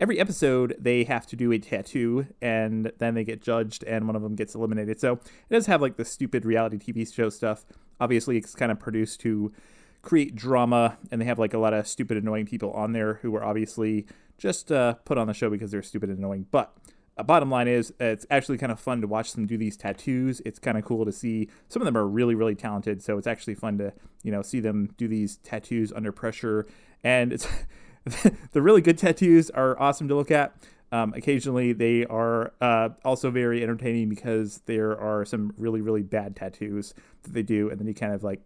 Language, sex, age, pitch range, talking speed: English, male, 30-49, 110-125 Hz, 225 wpm